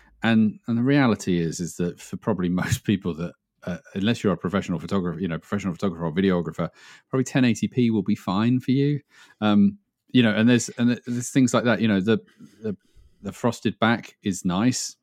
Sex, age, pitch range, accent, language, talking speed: male, 40-59, 90-110 Hz, British, English, 200 wpm